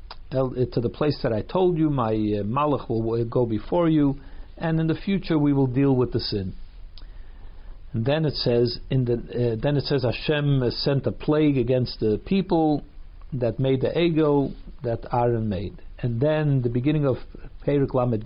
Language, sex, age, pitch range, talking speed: English, male, 50-69, 110-145 Hz, 185 wpm